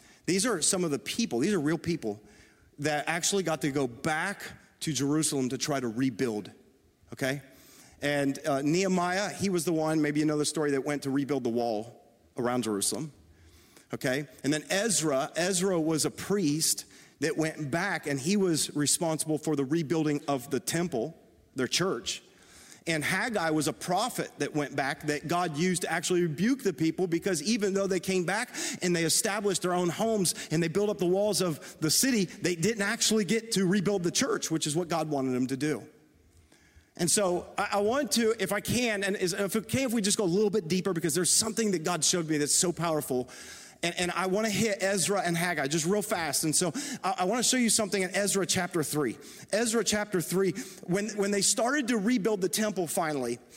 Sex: male